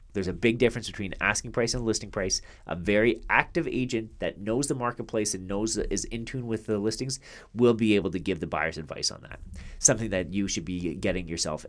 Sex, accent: male, American